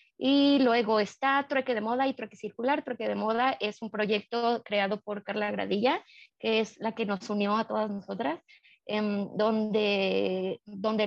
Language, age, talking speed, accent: Spanish, 20-39, 170 wpm, Mexican